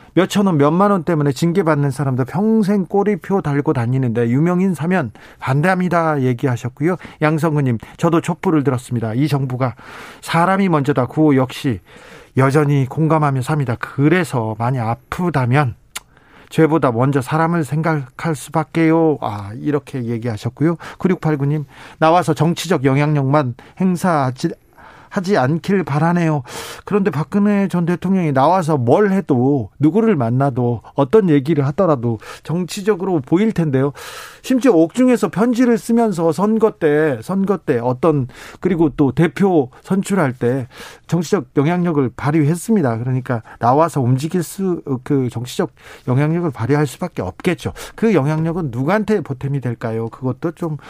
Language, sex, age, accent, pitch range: Korean, male, 40-59, native, 135-180 Hz